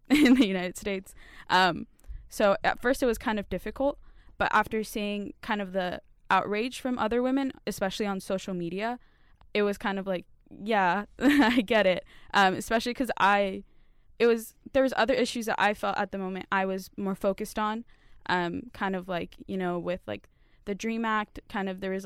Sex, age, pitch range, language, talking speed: female, 10-29, 190-230 Hz, English, 195 wpm